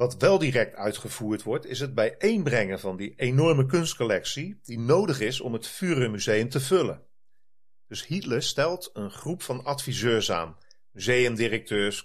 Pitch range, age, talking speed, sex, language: 105-135 Hz, 40-59, 145 wpm, male, Dutch